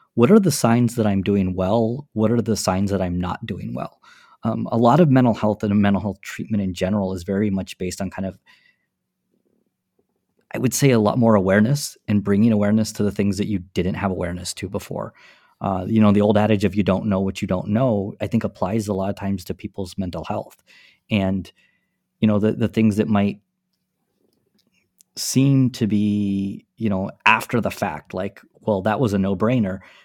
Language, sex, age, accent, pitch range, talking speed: English, male, 30-49, American, 100-115 Hz, 205 wpm